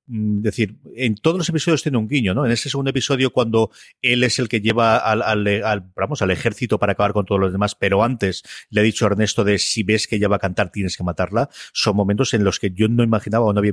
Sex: male